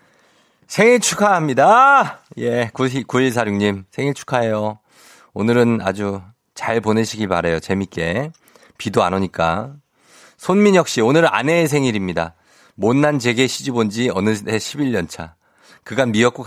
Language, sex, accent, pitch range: Korean, male, native, 100-145 Hz